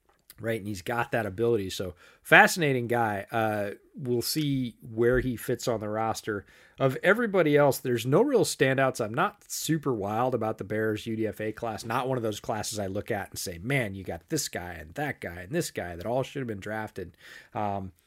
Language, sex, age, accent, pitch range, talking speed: English, male, 30-49, American, 105-125 Hz, 205 wpm